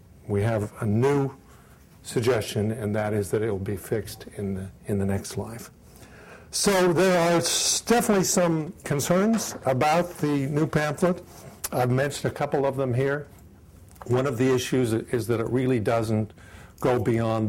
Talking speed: 160 wpm